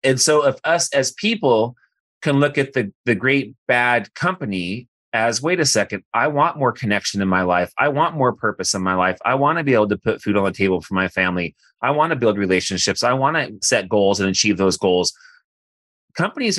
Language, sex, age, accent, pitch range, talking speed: English, male, 30-49, American, 100-155 Hz, 220 wpm